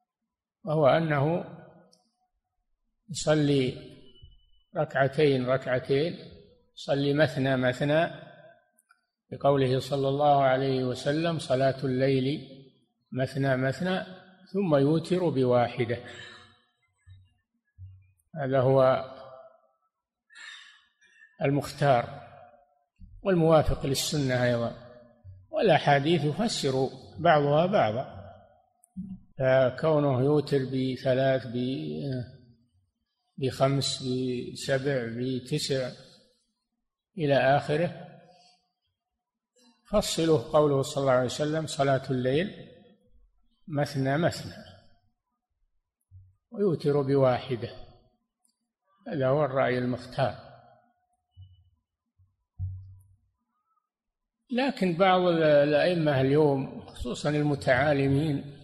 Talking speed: 60 wpm